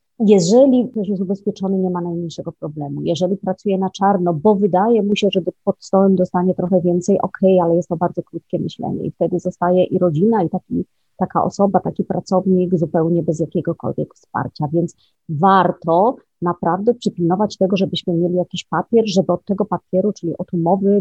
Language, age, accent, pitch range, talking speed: Polish, 30-49, native, 170-205 Hz, 170 wpm